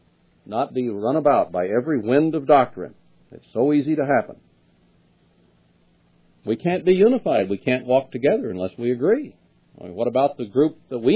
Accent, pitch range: American, 110-170 Hz